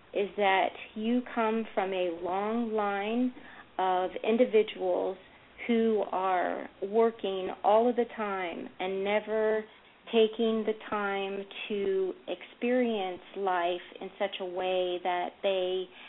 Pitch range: 185-225 Hz